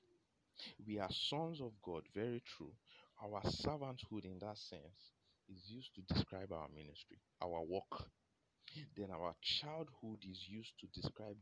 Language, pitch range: English, 95-120 Hz